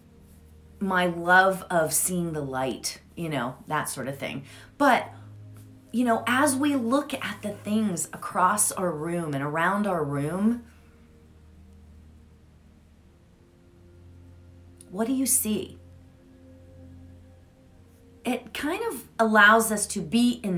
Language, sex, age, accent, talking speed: English, female, 30-49, American, 115 wpm